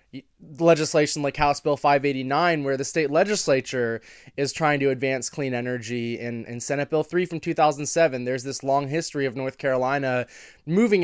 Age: 20-39